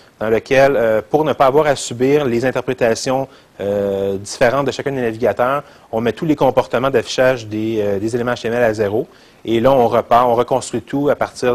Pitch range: 105-130 Hz